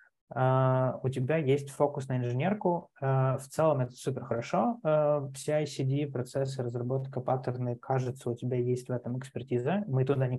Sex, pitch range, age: male, 120-140 Hz, 20-39